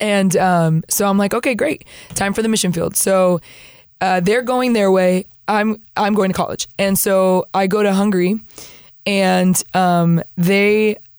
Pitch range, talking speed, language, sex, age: 185-220 Hz, 170 wpm, English, female, 20-39